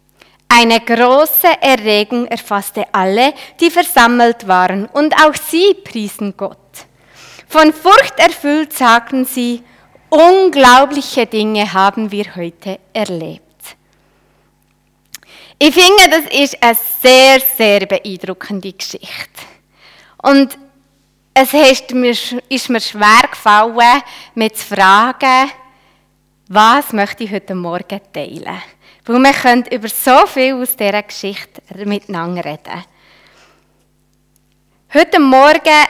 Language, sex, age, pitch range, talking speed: German, female, 20-39, 215-280 Hz, 105 wpm